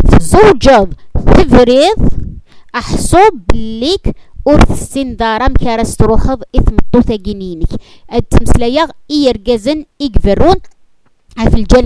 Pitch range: 215-305 Hz